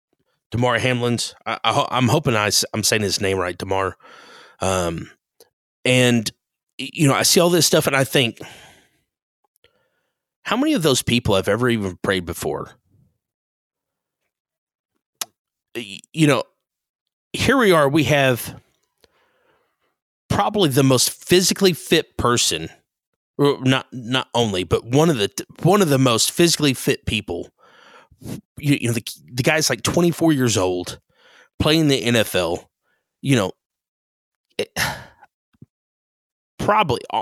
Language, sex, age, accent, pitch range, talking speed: English, male, 30-49, American, 105-160 Hz, 130 wpm